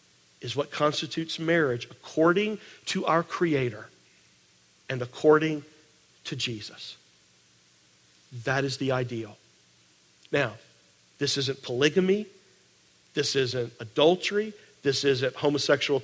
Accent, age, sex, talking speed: American, 40-59, male, 95 wpm